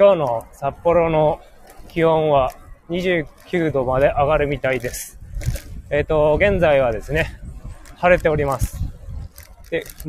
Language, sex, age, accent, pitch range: Japanese, male, 20-39, native, 115-170 Hz